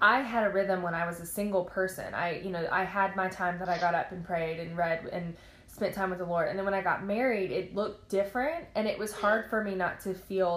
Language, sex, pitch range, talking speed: English, female, 175-205 Hz, 280 wpm